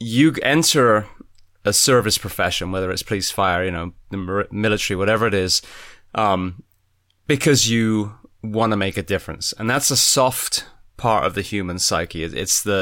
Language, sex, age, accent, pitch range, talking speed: English, male, 20-39, British, 95-115 Hz, 165 wpm